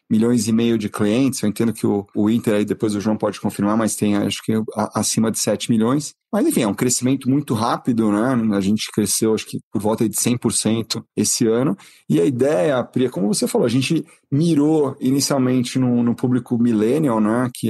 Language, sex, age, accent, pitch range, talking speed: Portuguese, male, 30-49, Brazilian, 110-130 Hz, 205 wpm